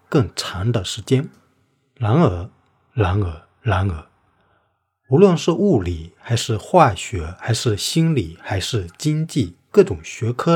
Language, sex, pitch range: Chinese, male, 100-135 Hz